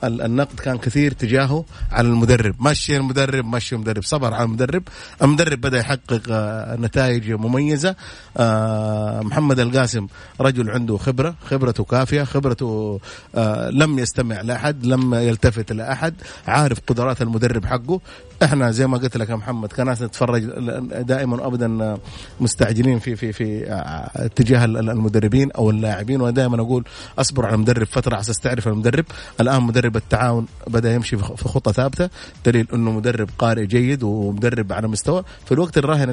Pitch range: 110-130 Hz